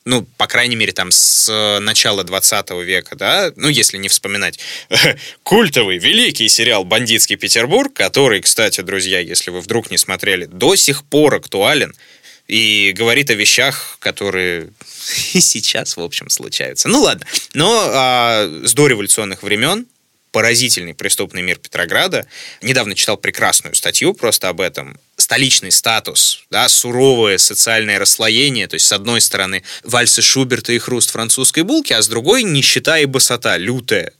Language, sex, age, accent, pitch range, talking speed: Russian, male, 20-39, native, 105-140 Hz, 145 wpm